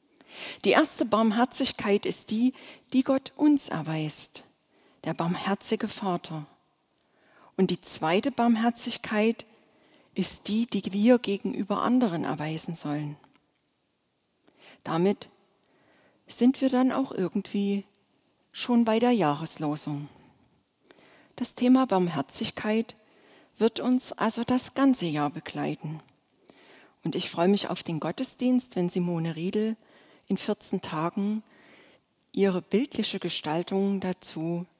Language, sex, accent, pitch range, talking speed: German, female, German, 165-235 Hz, 105 wpm